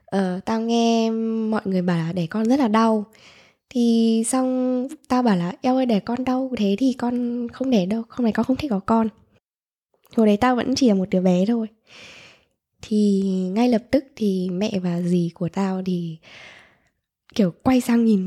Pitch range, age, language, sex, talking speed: 190-240 Hz, 10-29, Vietnamese, female, 195 wpm